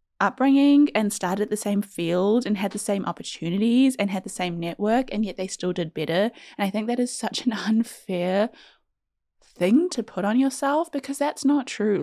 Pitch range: 195-250 Hz